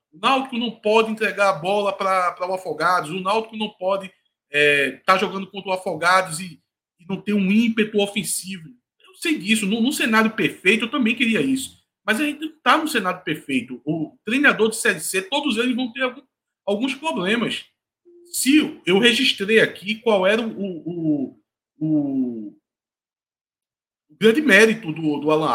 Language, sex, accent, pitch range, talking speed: Portuguese, male, Brazilian, 165-240 Hz, 160 wpm